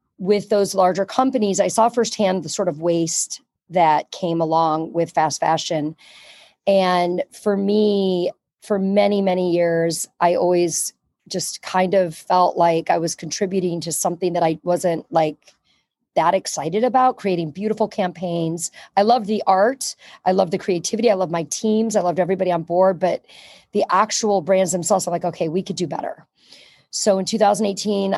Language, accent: English, American